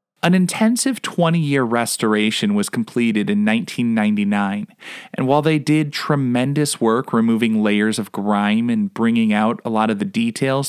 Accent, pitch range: American, 120-200 Hz